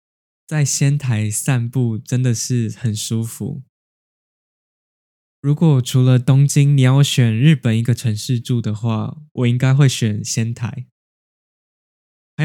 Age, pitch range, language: 10-29, 115-140 Hz, Chinese